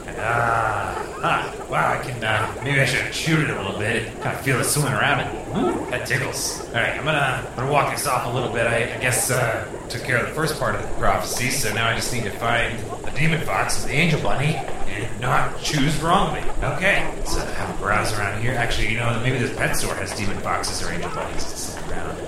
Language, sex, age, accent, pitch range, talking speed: English, male, 30-49, American, 105-130 Hz, 250 wpm